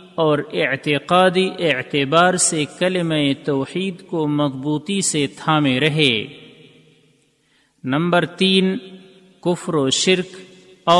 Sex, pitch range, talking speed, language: male, 145-180 Hz, 85 wpm, Urdu